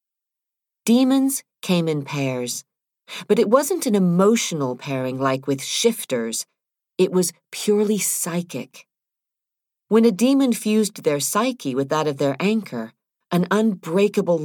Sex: female